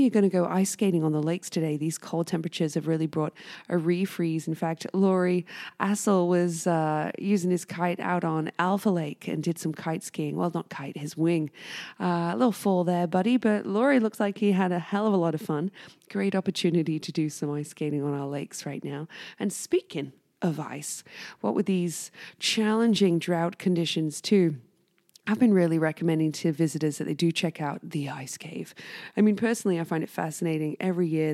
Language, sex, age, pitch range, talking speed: English, female, 20-39, 160-195 Hz, 200 wpm